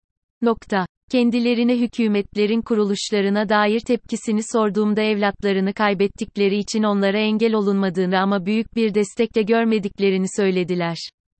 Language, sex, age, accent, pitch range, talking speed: Turkish, female, 30-49, native, 195-225 Hz, 100 wpm